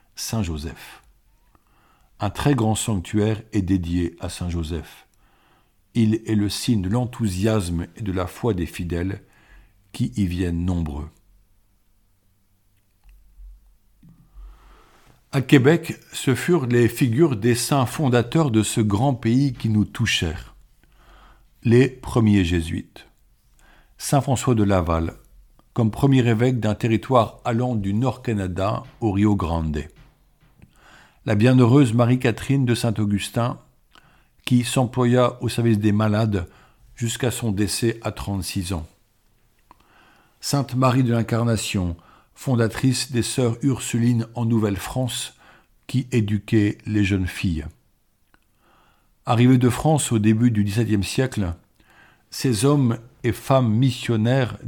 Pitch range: 100-125 Hz